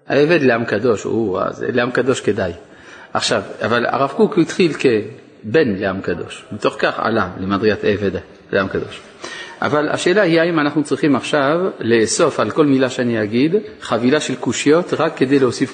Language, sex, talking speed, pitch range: Hebrew, male, 155 wpm, 110-160 Hz